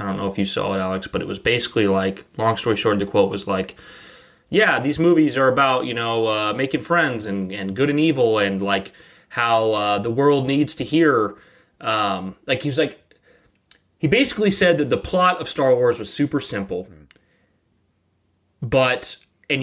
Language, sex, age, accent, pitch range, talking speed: English, male, 20-39, American, 100-130 Hz, 195 wpm